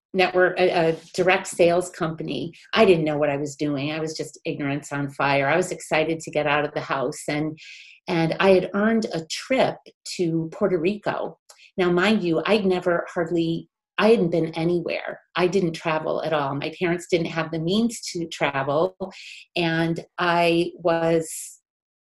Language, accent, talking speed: English, American, 175 wpm